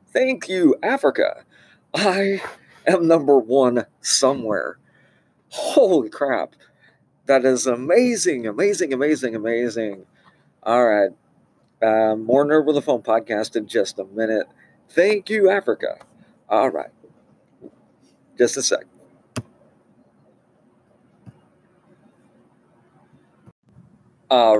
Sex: male